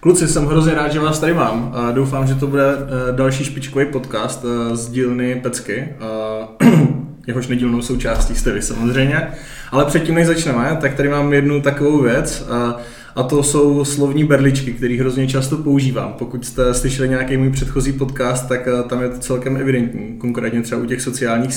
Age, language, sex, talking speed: 20-39, Czech, male, 165 wpm